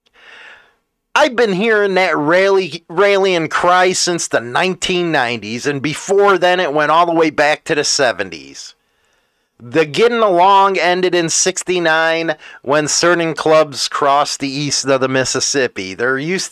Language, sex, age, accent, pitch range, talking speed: English, male, 40-59, American, 145-200 Hz, 140 wpm